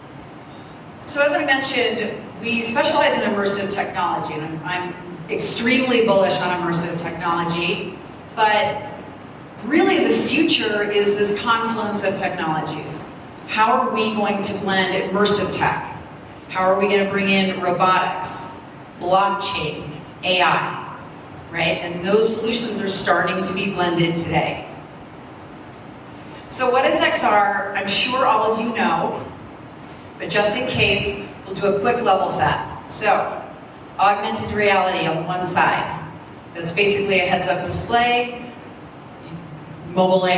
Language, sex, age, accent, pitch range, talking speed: English, female, 40-59, American, 165-205 Hz, 125 wpm